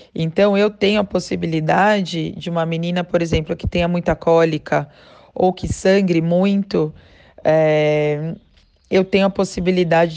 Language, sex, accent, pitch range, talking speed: Portuguese, female, Brazilian, 160-190 Hz, 130 wpm